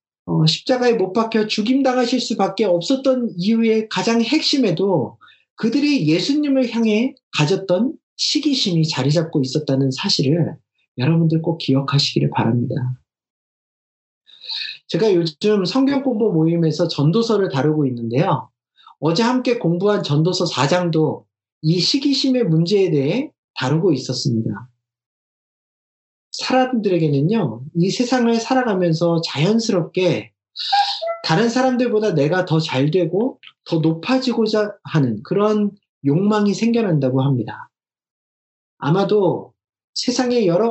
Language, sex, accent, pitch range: Korean, male, native, 150-230 Hz